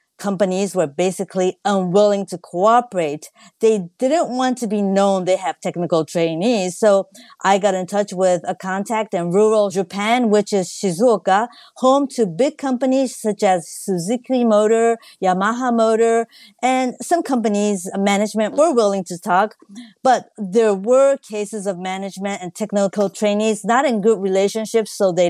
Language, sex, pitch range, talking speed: English, female, 185-225 Hz, 150 wpm